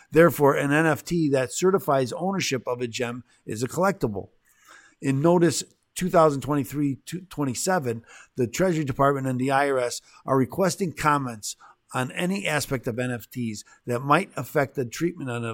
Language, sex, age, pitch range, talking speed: English, male, 50-69, 115-145 Hz, 130 wpm